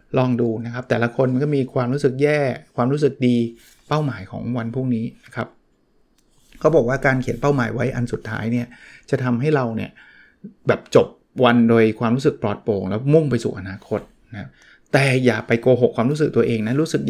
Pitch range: 120-145 Hz